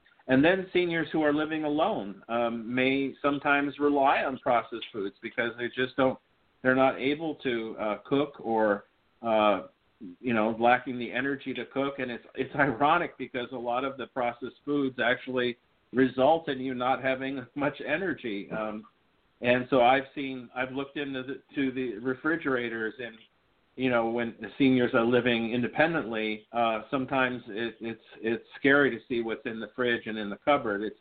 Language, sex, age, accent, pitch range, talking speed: English, male, 50-69, American, 115-140 Hz, 175 wpm